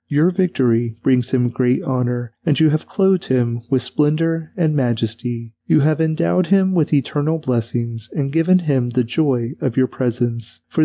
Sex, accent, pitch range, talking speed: male, American, 120-155 Hz, 170 wpm